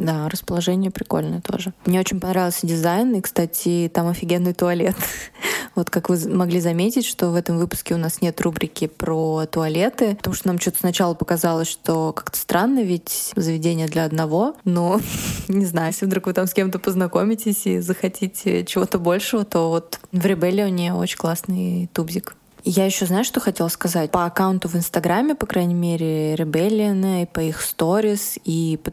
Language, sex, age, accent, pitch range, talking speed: Russian, female, 20-39, native, 165-195 Hz, 170 wpm